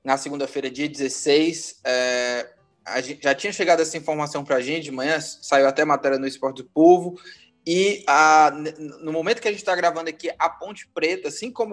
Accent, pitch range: Brazilian, 145-180 Hz